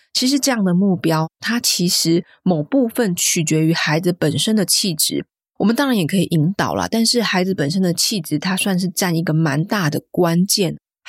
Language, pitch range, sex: Chinese, 170-225 Hz, female